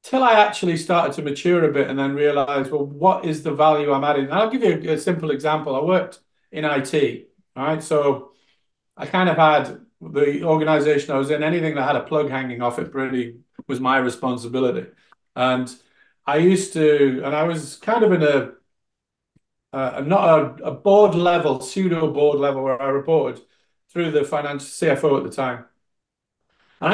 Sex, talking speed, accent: male, 190 wpm, British